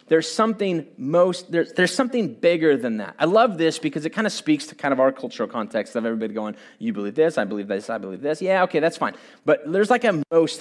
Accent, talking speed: American, 250 wpm